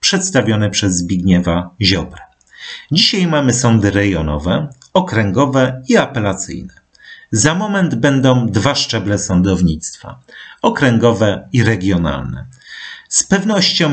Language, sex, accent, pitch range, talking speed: Polish, male, native, 100-145 Hz, 95 wpm